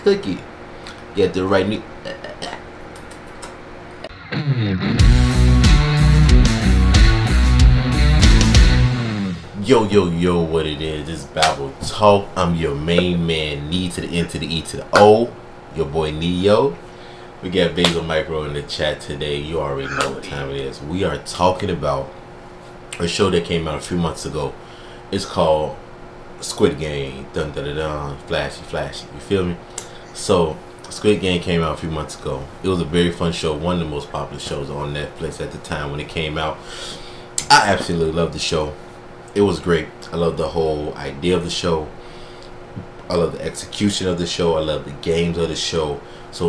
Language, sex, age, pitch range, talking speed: English, male, 30-49, 75-95 Hz, 175 wpm